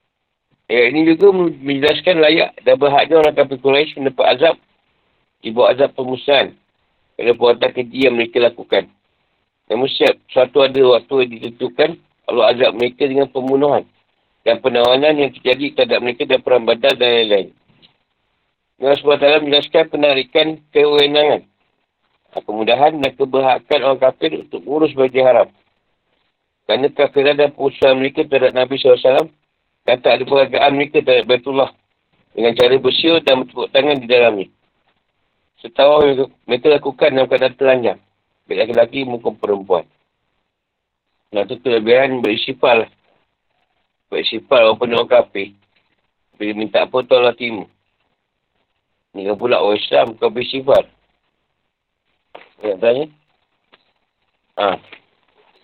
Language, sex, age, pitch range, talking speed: Malay, male, 50-69, 120-145 Hz, 125 wpm